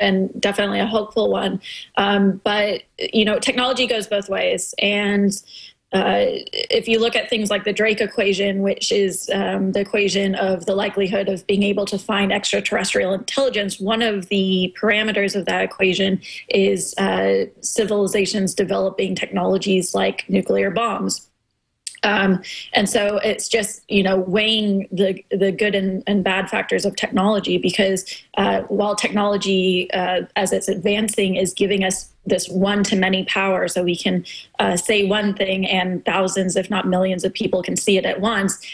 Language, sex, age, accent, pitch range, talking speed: English, female, 20-39, American, 190-210 Hz, 165 wpm